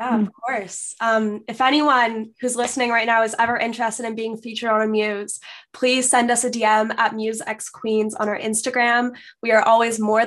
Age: 10-29